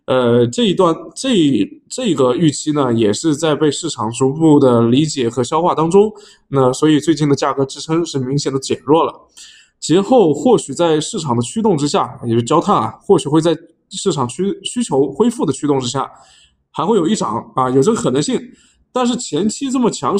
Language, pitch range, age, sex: Chinese, 130-195 Hz, 20-39, male